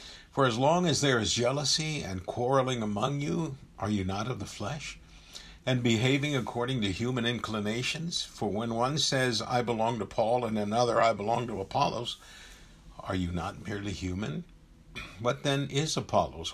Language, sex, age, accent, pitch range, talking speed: English, male, 60-79, American, 95-125 Hz, 165 wpm